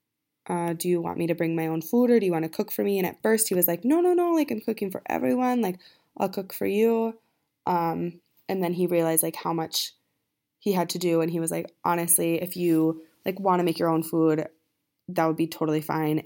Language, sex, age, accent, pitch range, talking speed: English, female, 20-39, American, 160-180 Hz, 250 wpm